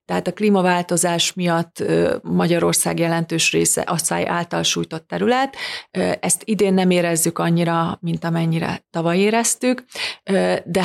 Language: Hungarian